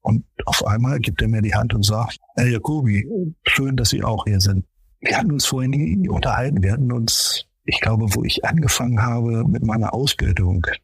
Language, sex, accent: German, male, German